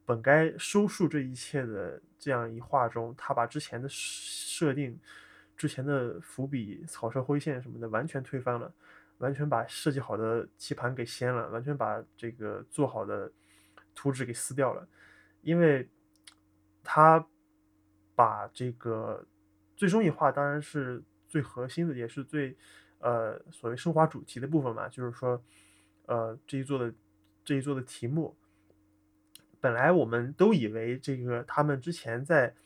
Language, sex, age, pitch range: Chinese, male, 20-39, 115-145 Hz